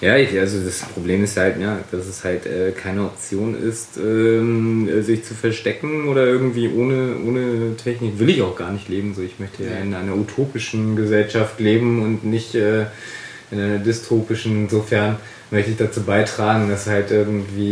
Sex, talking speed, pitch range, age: male, 185 wpm, 105-120 Hz, 20-39